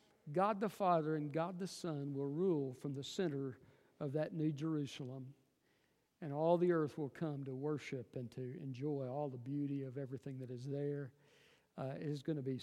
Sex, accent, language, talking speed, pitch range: male, American, English, 195 wpm, 155-225 Hz